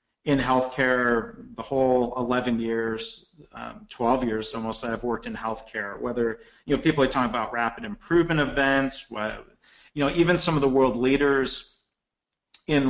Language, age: English, 40-59